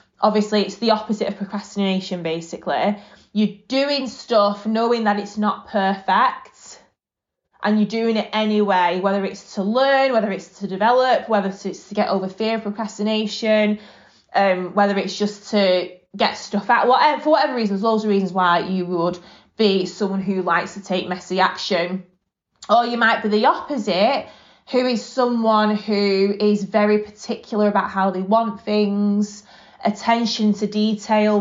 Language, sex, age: English, female, 20-39